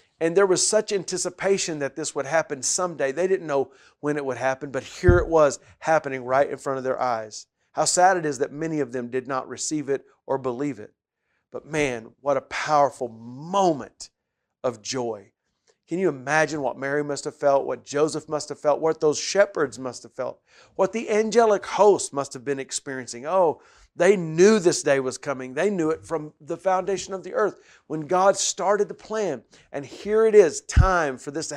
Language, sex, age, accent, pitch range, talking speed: English, male, 40-59, American, 135-175 Hz, 205 wpm